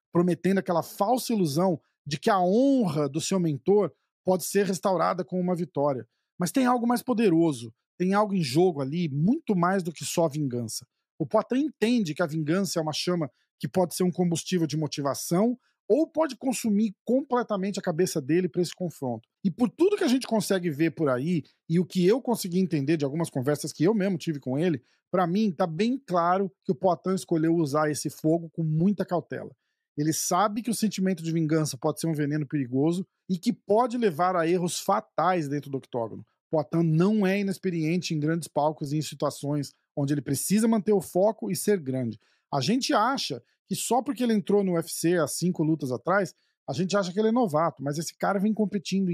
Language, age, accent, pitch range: Portuguese, 40-59, Brazilian, 155-195 Hz